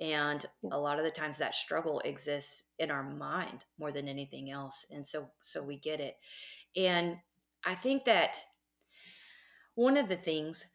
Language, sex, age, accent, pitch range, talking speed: English, female, 30-49, American, 155-190 Hz, 165 wpm